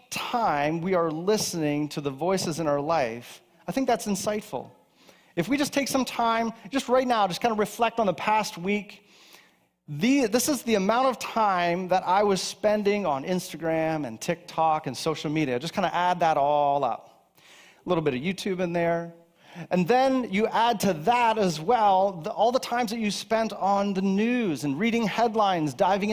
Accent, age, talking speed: American, 30-49, 190 wpm